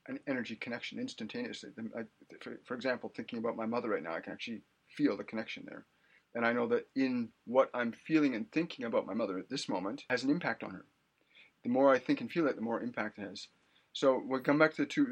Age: 30-49